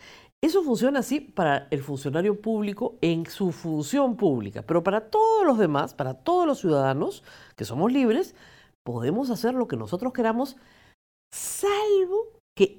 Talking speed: 145 wpm